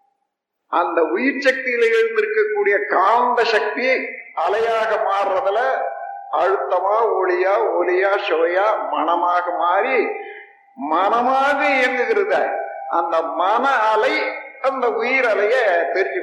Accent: native